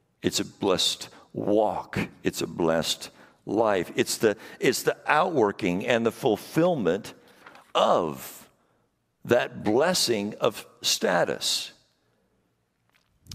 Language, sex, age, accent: English, male, 60-79, American